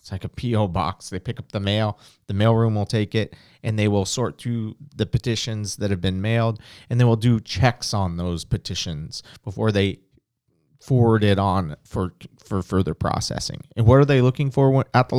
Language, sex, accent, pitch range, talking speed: English, male, American, 105-130 Hz, 200 wpm